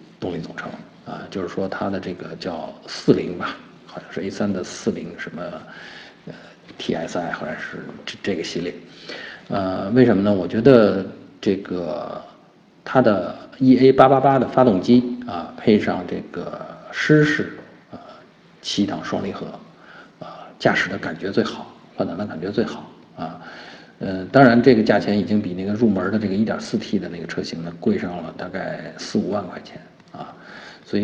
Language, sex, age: Chinese, male, 50-69